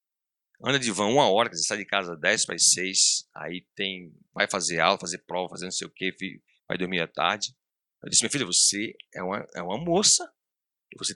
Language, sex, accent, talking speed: Portuguese, male, Brazilian, 210 wpm